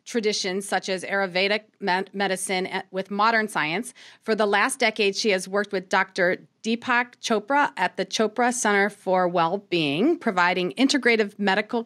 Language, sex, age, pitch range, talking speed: English, female, 30-49, 180-225 Hz, 150 wpm